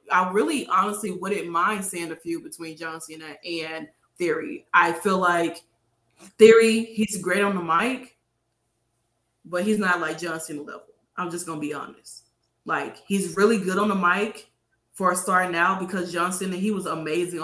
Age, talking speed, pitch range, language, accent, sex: 20-39, 180 wpm, 165-195 Hz, English, American, female